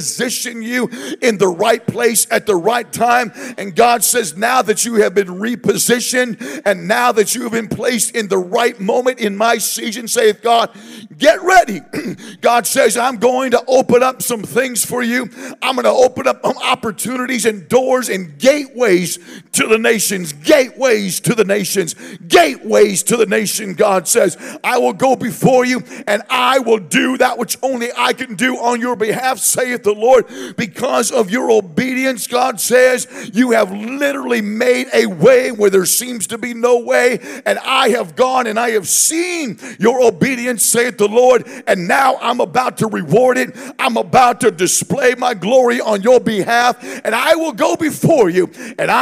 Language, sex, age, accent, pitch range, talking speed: English, male, 50-69, American, 215-255 Hz, 180 wpm